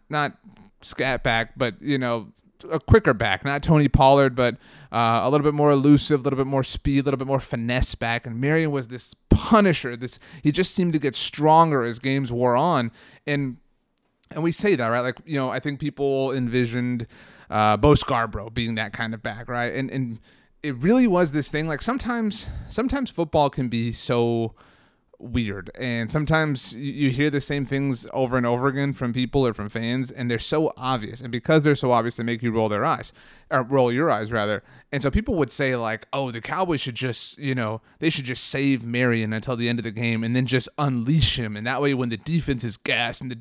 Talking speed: 220 wpm